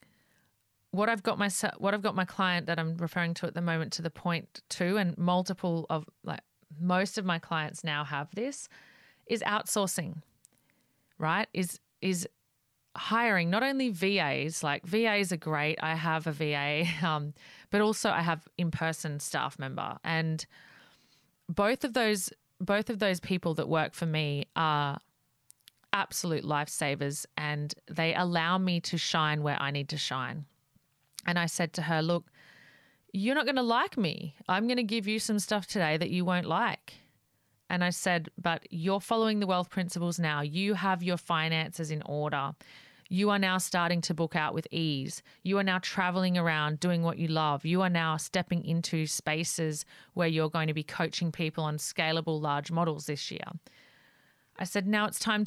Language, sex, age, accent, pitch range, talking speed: English, female, 30-49, Australian, 155-185 Hz, 175 wpm